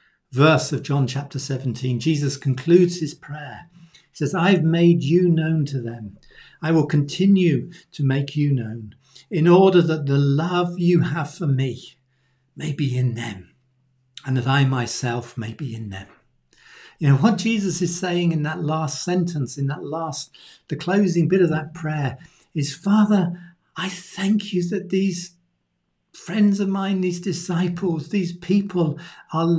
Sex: male